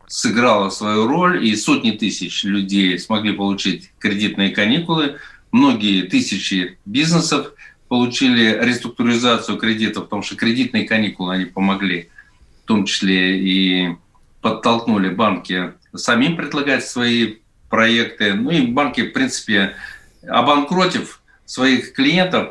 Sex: male